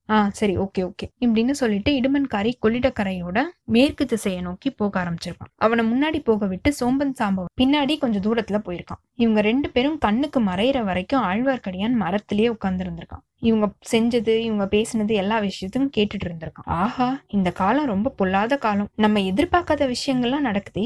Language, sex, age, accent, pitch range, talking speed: Tamil, female, 20-39, native, 205-275 Hz, 120 wpm